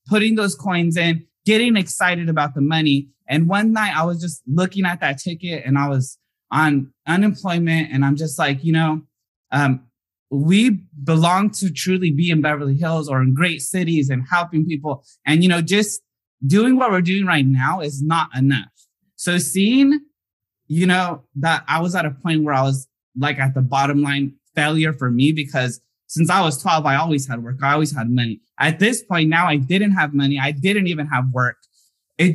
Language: English